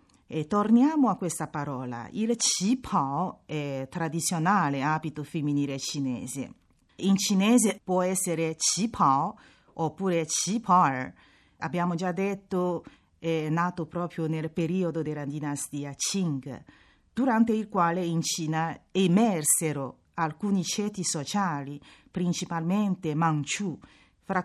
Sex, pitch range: female, 155-205 Hz